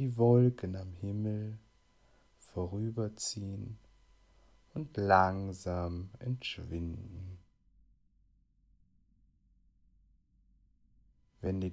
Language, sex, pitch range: German, male, 90-110 Hz